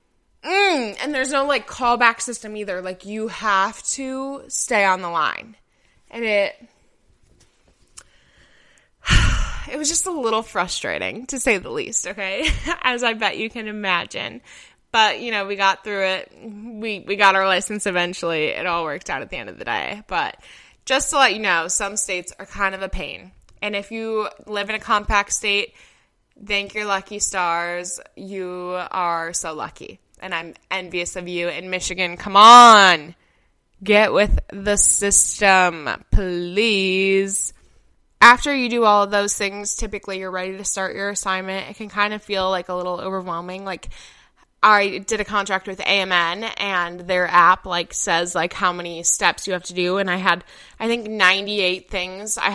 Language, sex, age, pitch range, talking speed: English, female, 20-39, 185-225 Hz, 175 wpm